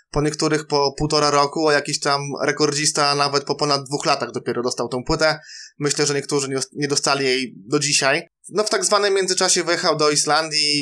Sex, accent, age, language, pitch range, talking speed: male, native, 20-39, Polish, 135-160 Hz, 190 wpm